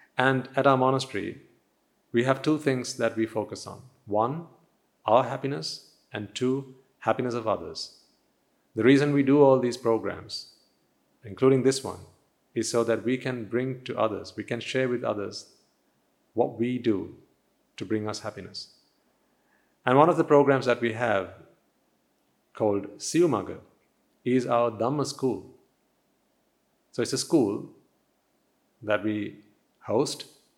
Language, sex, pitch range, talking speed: English, male, 110-130 Hz, 140 wpm